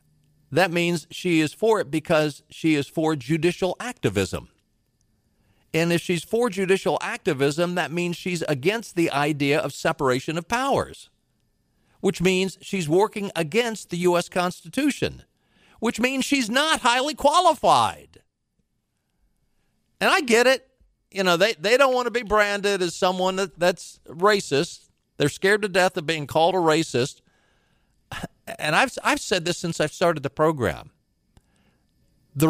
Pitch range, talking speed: 150-205 Hz, 145 wpm